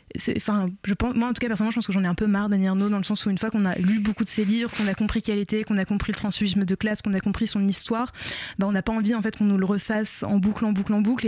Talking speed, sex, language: 335 wpm, female, French